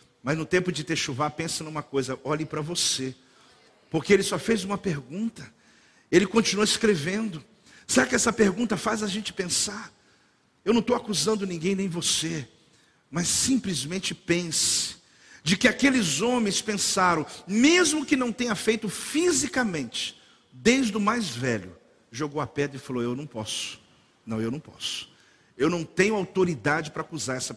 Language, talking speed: Portuguese, 160 wpm